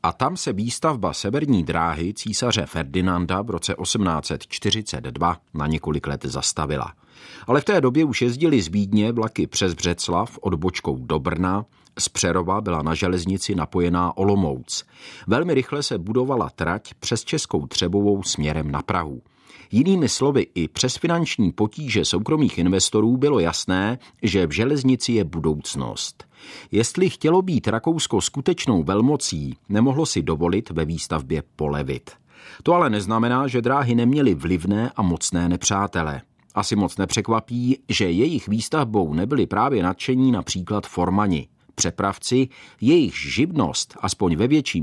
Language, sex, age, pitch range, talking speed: Czech, male, 40-59, 85-120 Hz, 135 wpm